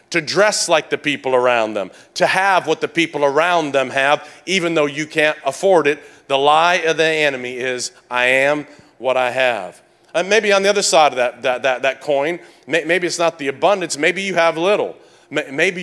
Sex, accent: male, American